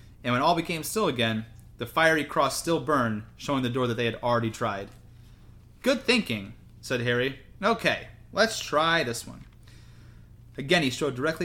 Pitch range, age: 115-145 Hz, 30-49